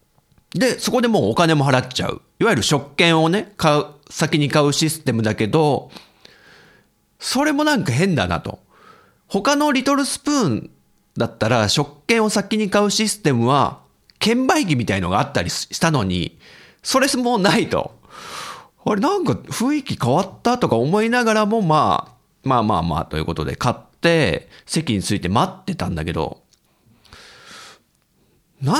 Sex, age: male, 40-59